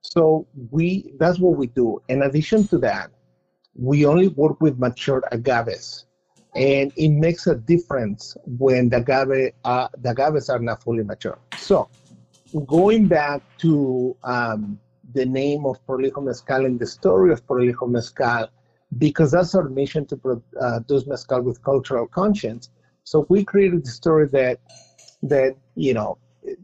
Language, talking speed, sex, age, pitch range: English, 150 wpm, male, 50-69, 120-155 Hz